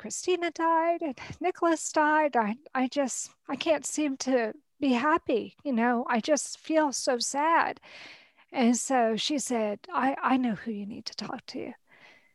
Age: 40-59